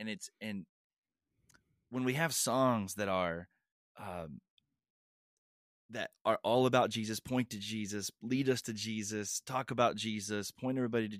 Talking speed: 150 wpm